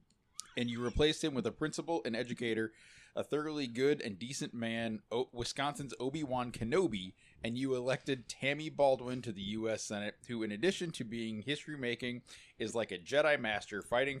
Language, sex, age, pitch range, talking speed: English, male, 20-39, 105-135 Hz, 170 wpm